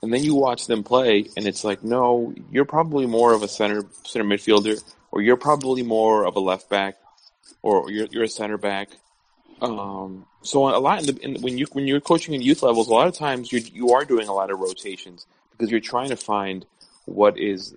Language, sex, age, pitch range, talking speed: English, male, 30-49, 100-125 Hz, 225 wpm